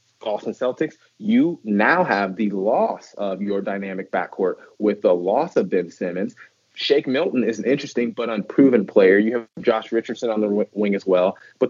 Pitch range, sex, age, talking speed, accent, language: 105-135 Hz, male, 30-49, 180 wpm, American, English